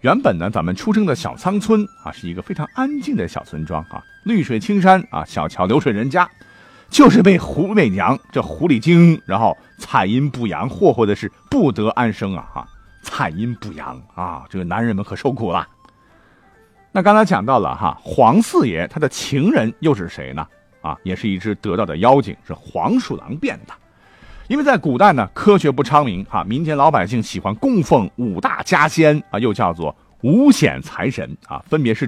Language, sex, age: Chinese, male, 50-69